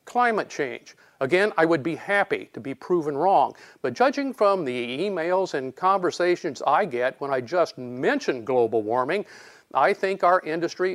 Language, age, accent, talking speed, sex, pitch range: English, 50-69, American, 165 wpm, male, 135-190 Hz